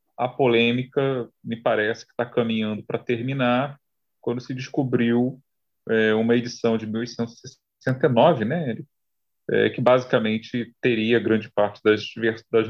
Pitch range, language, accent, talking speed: 110-125 Hz, Portuguese, Brazilian, 125 wpm